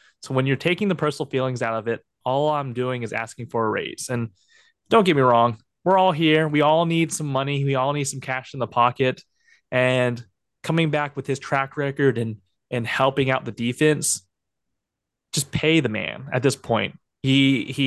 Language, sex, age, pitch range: English, male, 20-39, 115-135 Hz